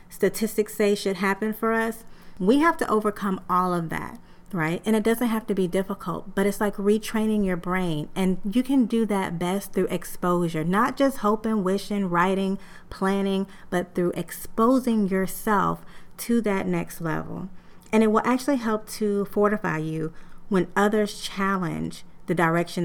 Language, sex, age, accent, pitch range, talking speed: English, female, 30-49, American, 175-220 Hz, 165 wpm